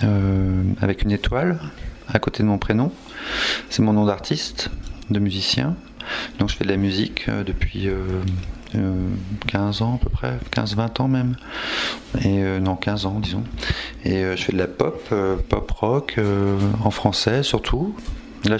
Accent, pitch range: French, 95-110 Hz